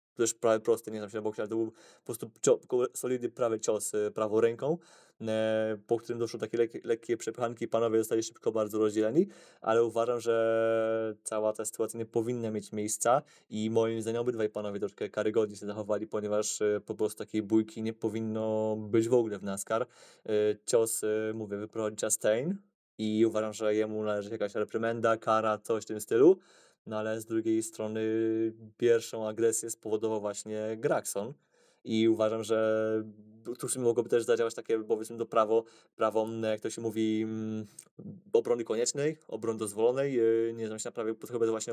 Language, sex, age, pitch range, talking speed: Polish, male, 20-39, 110-115 Hz, 160 wpm